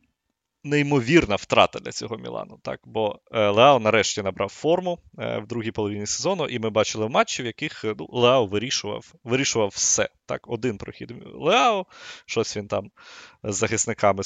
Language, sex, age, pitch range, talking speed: Ukrainian, male, 20-39, 110-150 Hz, 150 wpm